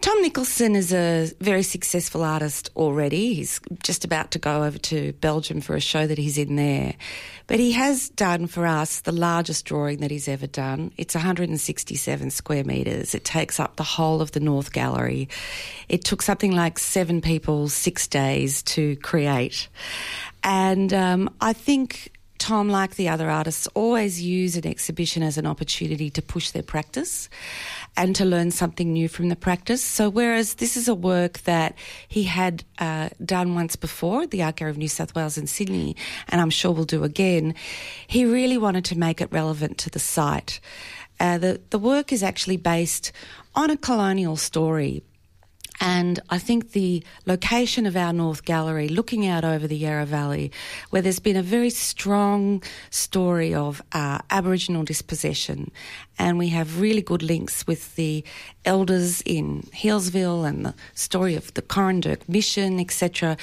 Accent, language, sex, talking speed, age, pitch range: Australian, English, female, 170 wpm, 40-59, 155-195 Hz